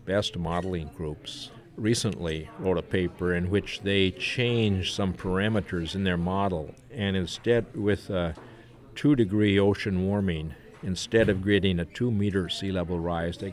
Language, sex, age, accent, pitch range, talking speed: English, male, 50-69, American, 90-110 Hz, 150 wpm